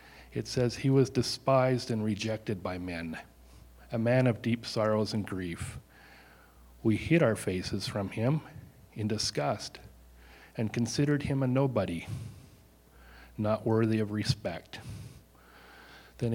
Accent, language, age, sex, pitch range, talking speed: American, English, 40-59, male, 100-125 Hz, 125 wpm